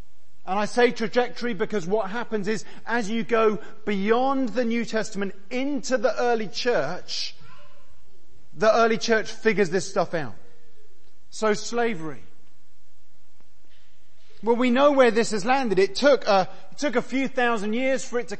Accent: British